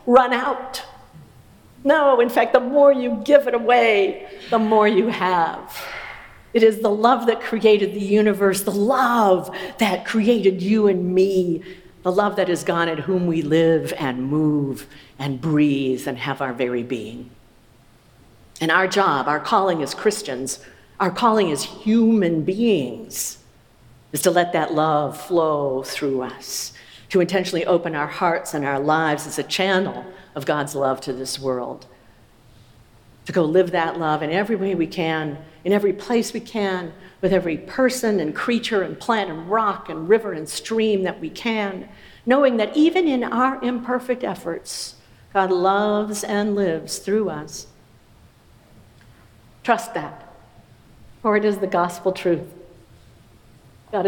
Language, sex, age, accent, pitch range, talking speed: English, female, 50-69, American, 150-215 Hz, 155 wpm